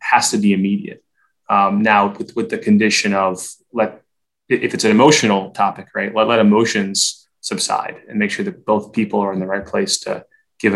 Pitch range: 100-115 Hz